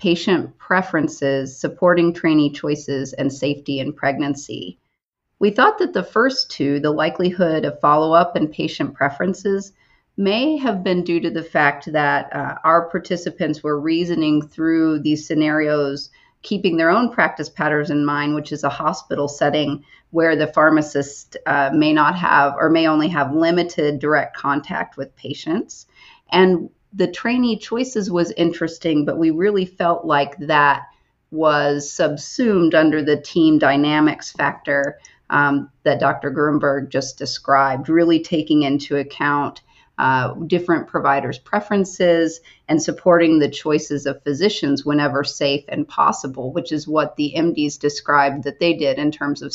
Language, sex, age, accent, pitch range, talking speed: English, female, 40-59, American, 145-170 Hz, 145 wpm